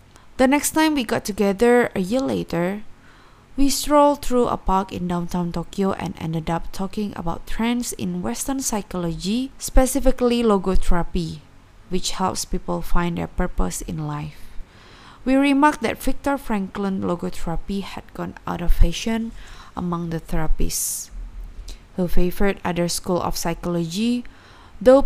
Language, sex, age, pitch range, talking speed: Indonesian, female, 20-39, 170-230 Hz, 135 wpm